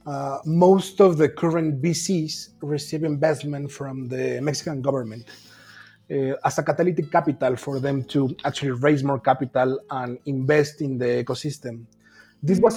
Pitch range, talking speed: 135-160 Hz, 145 wpm